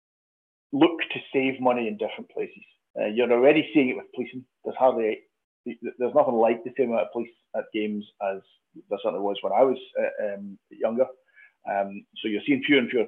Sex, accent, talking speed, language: male, British, 195 wpm, English